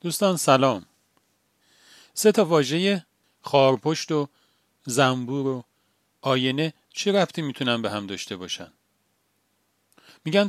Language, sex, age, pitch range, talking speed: Persian, male, 40-59, 115-155 Hz, 105 wpm